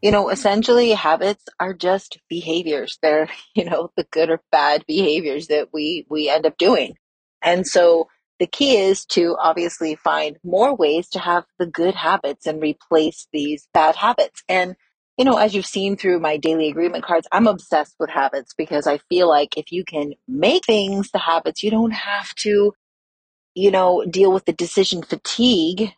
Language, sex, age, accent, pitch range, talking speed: English, female, 30-49, American, 155-200 Hz, 180 wpm